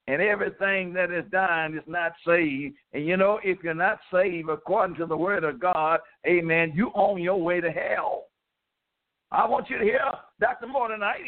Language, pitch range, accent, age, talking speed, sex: English, 180-235 Hz, American, 60-79, 190 wpm, male